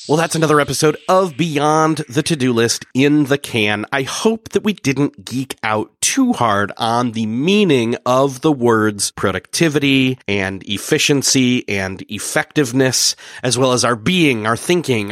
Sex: male